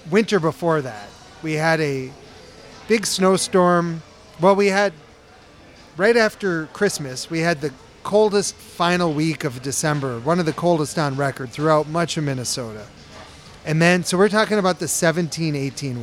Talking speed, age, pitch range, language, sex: 150 wpm, 40-59, 145-185 Hz, English, male